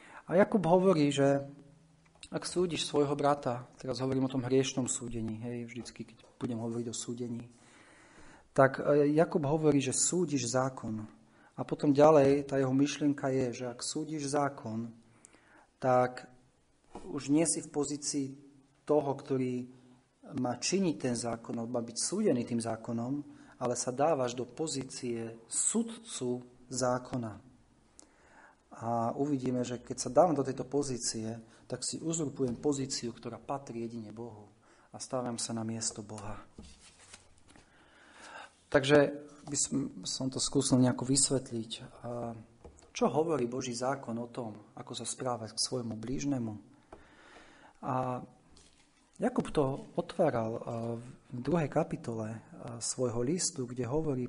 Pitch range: 120-145 Hz